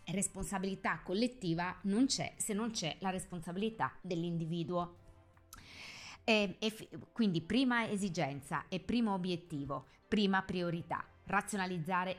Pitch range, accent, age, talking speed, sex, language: 155-205 Hz, native, 30-49, 95 wpm, female, Italian